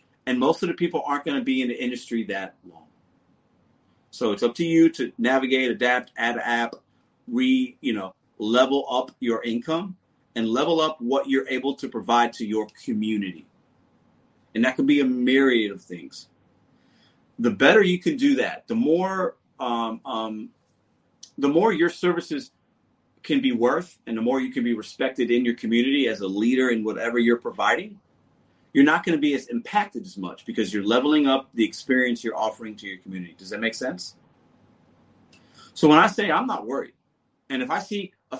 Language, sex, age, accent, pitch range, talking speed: English, male, 30-49, American, 115-170 Hz, 185 wpm